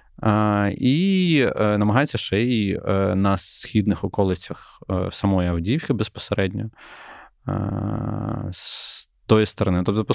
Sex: male